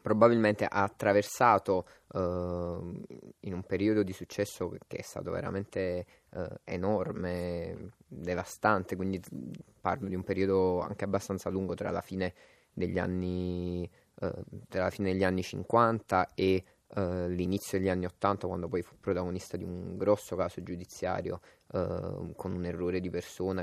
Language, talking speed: Italian, 140 wpm